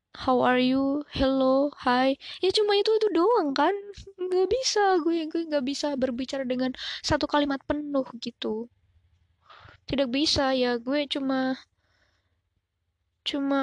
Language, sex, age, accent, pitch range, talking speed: Indonesian, female, 20-39, native, 215-275 Hz, 130 wpm